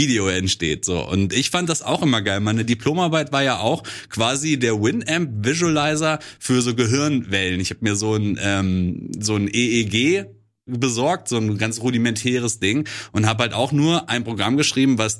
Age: 30-49